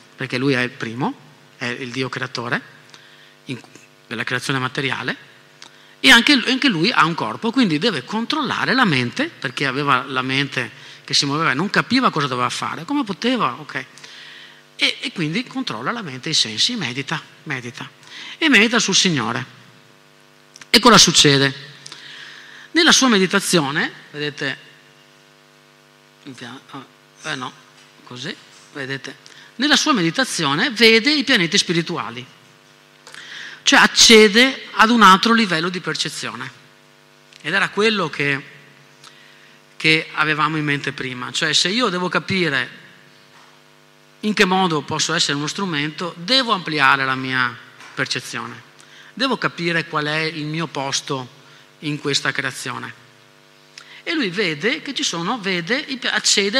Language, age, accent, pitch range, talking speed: Italian, 40-59, native, 135-200 Hz, 135 wpm